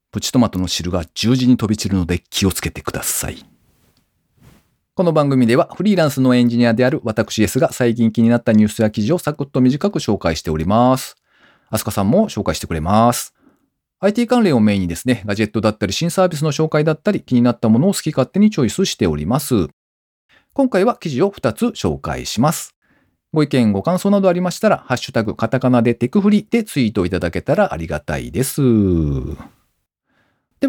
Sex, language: male, Japanese